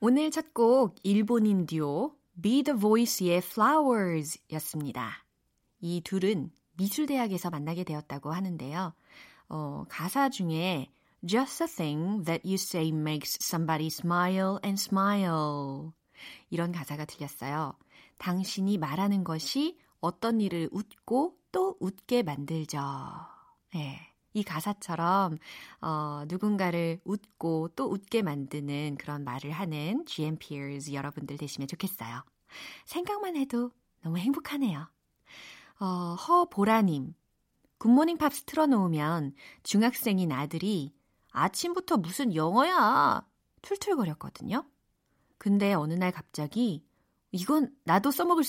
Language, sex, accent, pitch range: Korean, female, native, 155-235 Hz